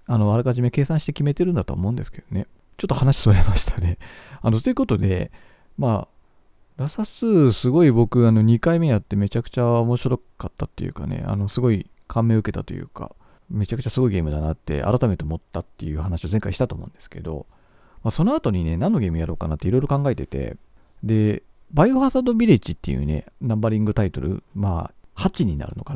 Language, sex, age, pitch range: Japanese, male, 40-59, 95-135 Hz